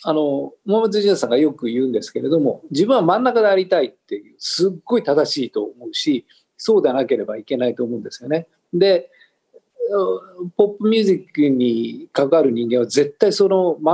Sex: male